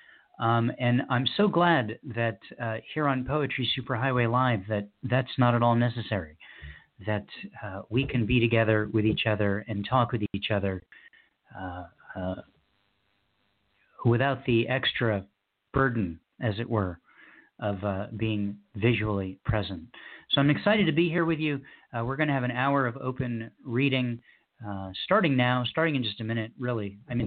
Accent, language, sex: American, English, male